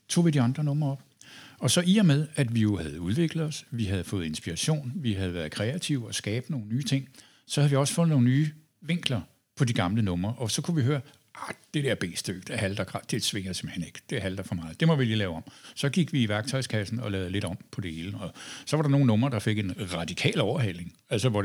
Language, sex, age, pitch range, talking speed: Danish, male, 60-79, 105-145 Hz, 260 wpm